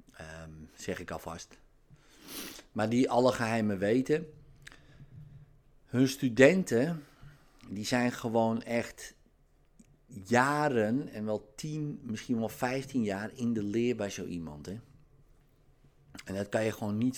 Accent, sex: Dutch, male